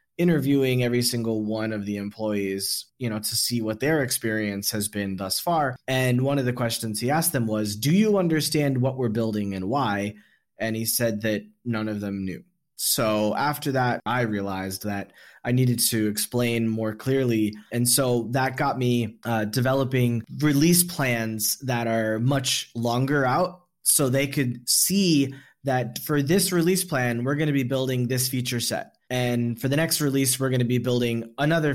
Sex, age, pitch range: male, 20-39, 115-140 Hz